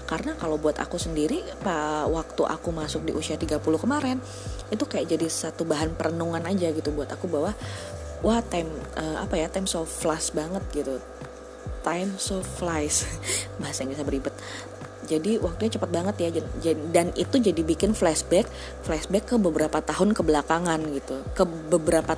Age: 20-39